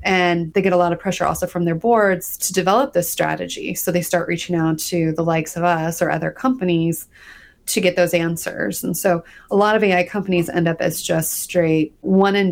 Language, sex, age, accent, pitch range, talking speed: English, female, 30-49, American, 165-190 Hz, 220 wpm